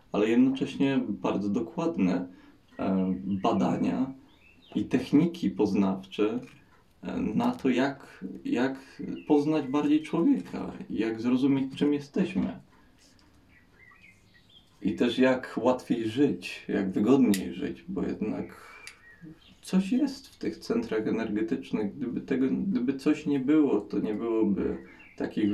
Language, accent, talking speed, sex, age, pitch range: Polish, native, 105 wpm, male, 20-39, 100-145 Hz